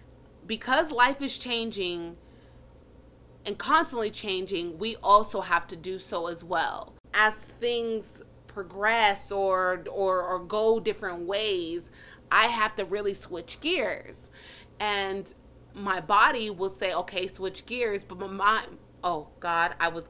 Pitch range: 185-230 Hz